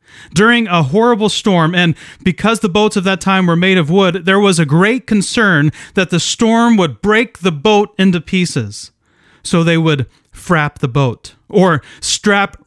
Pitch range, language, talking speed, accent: 160-205 Hz, English, 175 wpm, American